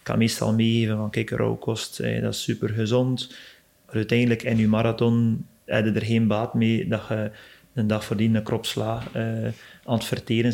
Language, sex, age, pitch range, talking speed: Dutch, male, 30-49, 110-125 Hz, 195 wpm